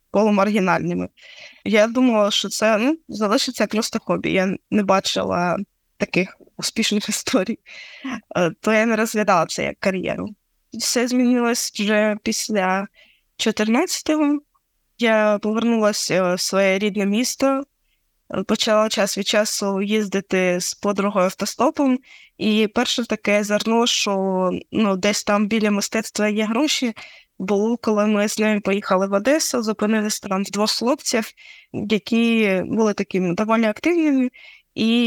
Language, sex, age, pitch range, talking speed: Ukrainian, female, 20-39, 200-240 Hz, 125 wpm